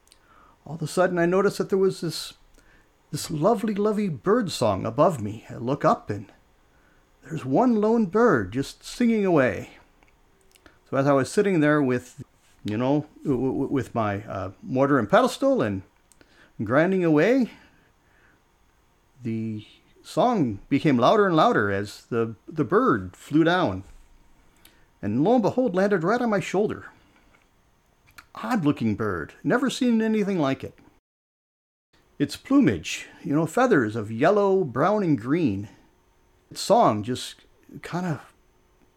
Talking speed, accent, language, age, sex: 135 wpm, American, English, 50-69, male